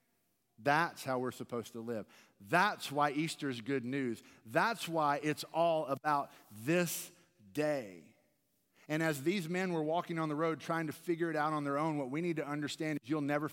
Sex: male